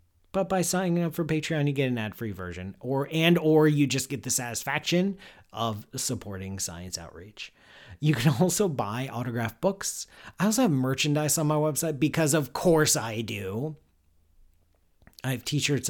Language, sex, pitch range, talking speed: English, male, 100-140 Hz, 165 wpm